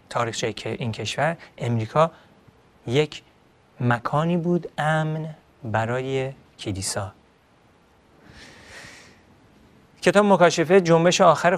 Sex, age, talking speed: male, 30-49, 75 wpm